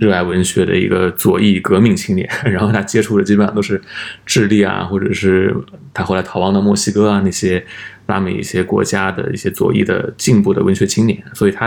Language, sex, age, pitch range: Chinese, male, 20-39, 100-115 Hz